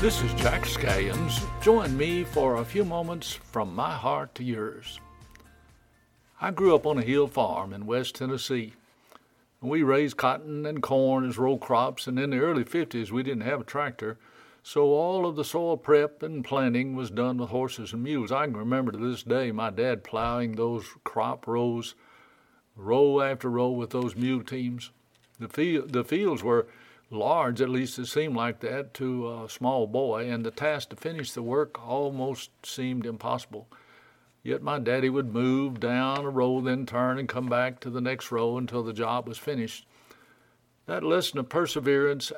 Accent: American